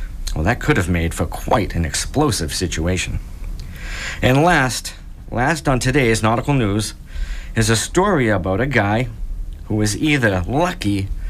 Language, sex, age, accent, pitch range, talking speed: English, male, 50-69, American, 85-130 Hz, 145 wpm